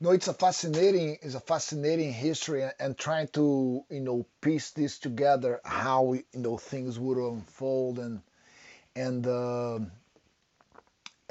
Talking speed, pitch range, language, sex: 135 wpm, 125-155 Hz, English, male